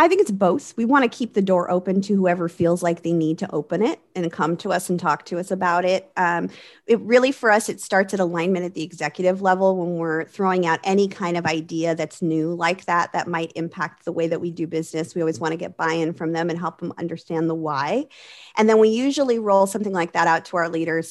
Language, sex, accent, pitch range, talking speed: English, female, American, 170-205 Hz, 255 wpm